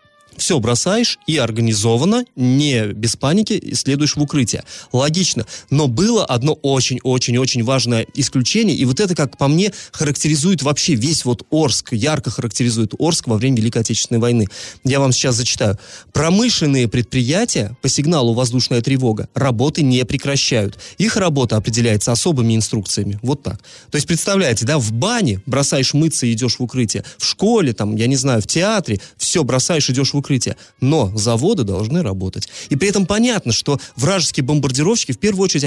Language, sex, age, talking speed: Russian, male, 20-39, 165 wpm